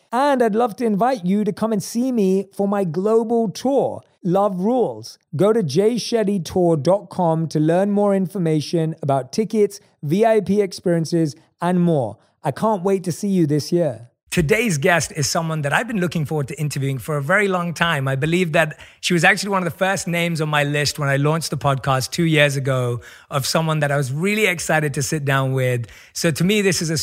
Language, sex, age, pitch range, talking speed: English, male, 30-49, 145-190 Hz, 205 wpm